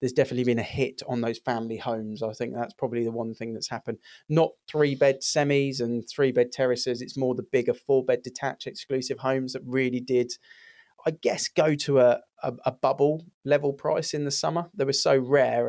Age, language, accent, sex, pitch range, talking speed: 20-39, English, British, male, 120-135 Hz, 210 wpm